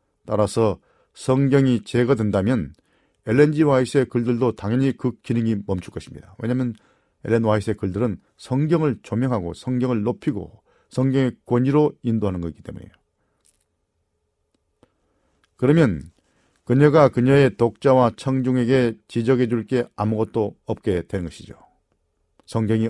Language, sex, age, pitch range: Korean, male, 40-59, 105-135 Hz